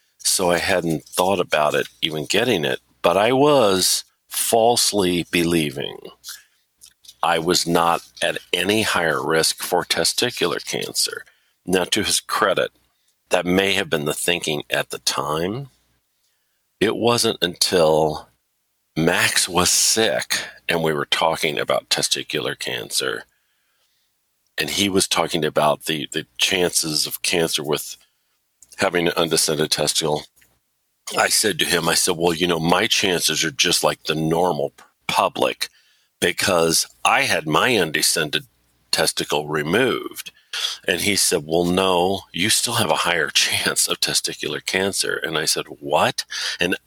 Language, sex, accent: English, male, American